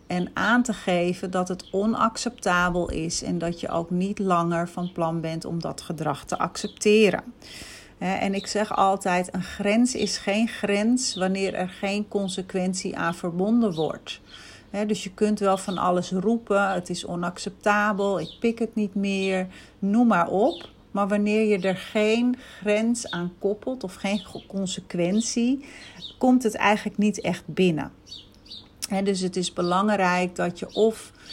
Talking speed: 155 wpm